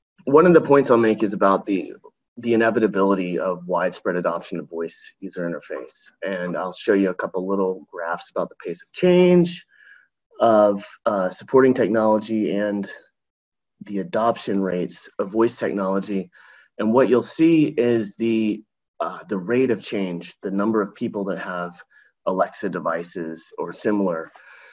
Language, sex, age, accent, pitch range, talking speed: English, male, 30-49, American, 95-120 Hz, 155 wpm